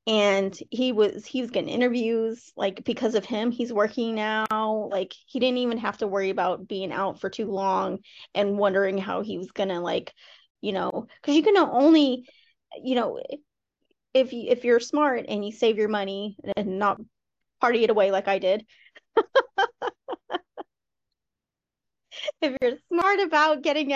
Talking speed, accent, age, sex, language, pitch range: 165 wpm, American, 20-39, female, English, 195-255 Hz